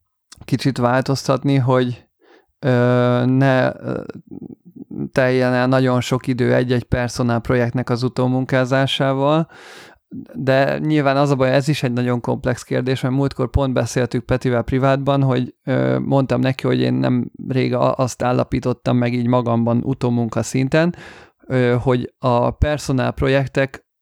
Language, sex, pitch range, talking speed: Hungarian, male, 125-135 Hz, 130 wpm